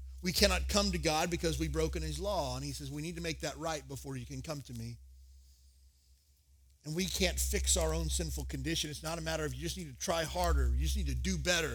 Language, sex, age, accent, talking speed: English, male, 40-59, American, 255 wpm